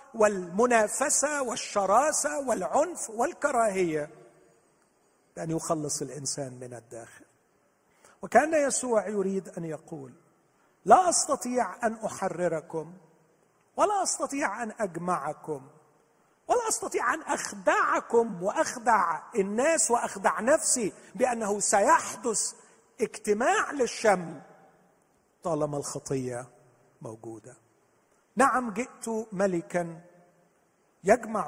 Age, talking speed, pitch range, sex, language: 50-69, 80 wpm, 145-225 Hz, male, Arabic